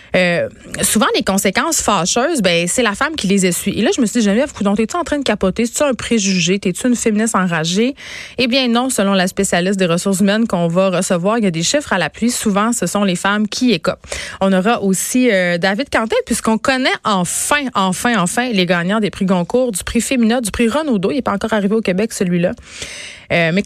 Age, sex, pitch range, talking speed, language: 30-49, female, 185-240 Hz, 230 wpm, French